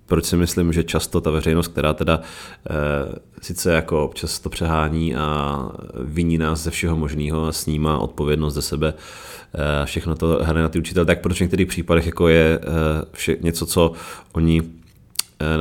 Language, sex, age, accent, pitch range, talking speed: Czech, male, 30-49, native, 75-85 Hz, 175 wpm